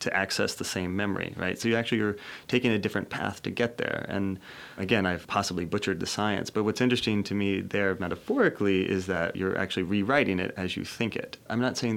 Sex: male